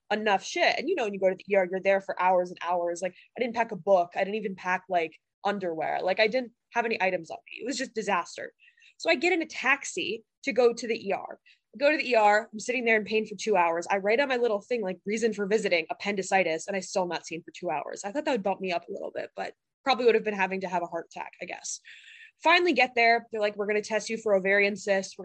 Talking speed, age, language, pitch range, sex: 285 wpm, 20-39, English, 190-245 Hz, female